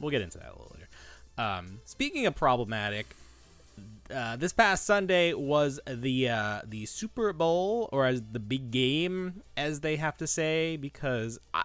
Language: English